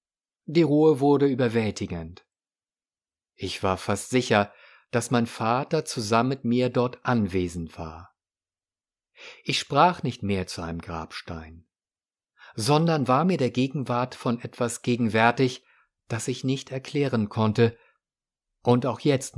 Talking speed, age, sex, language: 125 wpm, 50-69, male, German